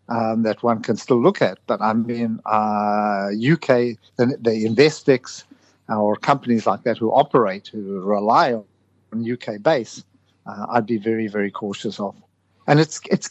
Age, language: 50-69, English